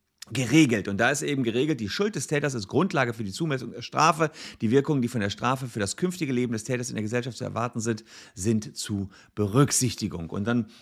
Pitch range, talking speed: 110-150 Hz, 220 wpm